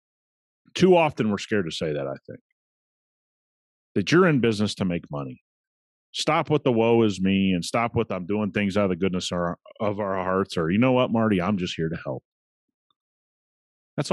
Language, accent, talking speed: English, American, 195 wpm